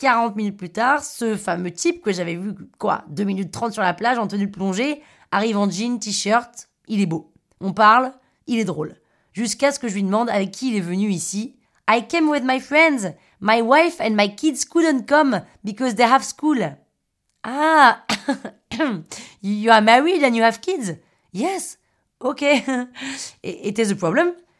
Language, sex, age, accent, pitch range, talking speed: French, female, 30-49, French, 200-265 Hz, 185 wpm